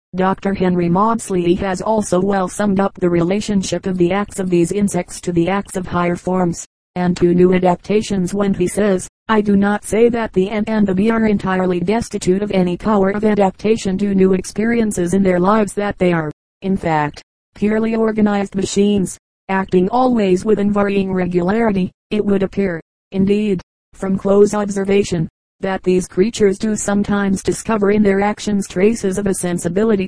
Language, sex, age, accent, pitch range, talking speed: English, female, 40-59, American, 185-205 Hz, 175 wpm